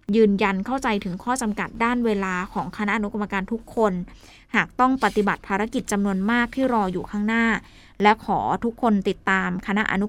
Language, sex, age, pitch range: Thai, female, 20-39, 195-250 Hz